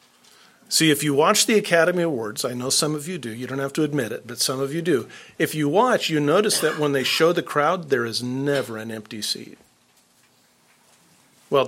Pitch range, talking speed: 130-190 Hz, 215 wpm